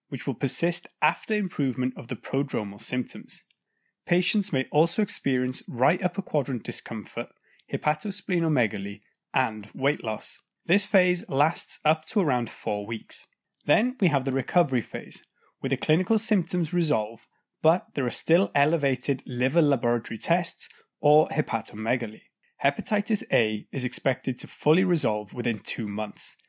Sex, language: male, English